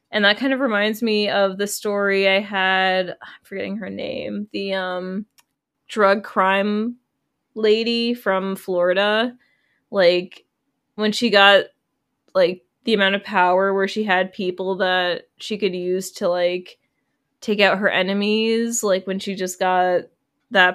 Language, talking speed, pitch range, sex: English, 150 wpm, 185-220 Hz, female